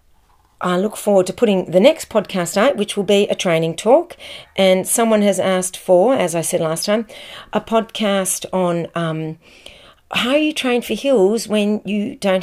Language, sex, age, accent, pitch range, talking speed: English, female, 40-59, Australian, 170-210 Hz, 180 wpm